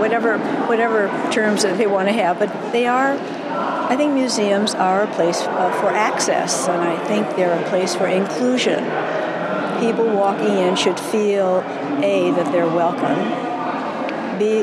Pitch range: 185-235 Hz